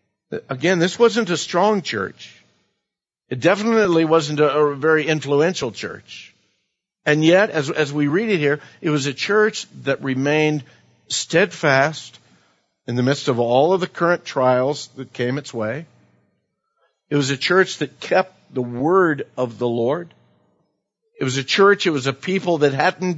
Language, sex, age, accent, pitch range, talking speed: English, male, 50-69, American, 140-190 Hz, 165 wpm